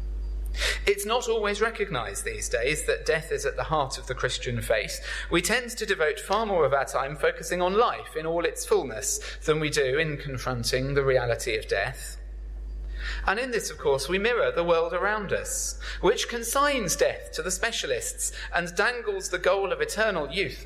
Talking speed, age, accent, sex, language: 190 wpm, 30-49, British, male, English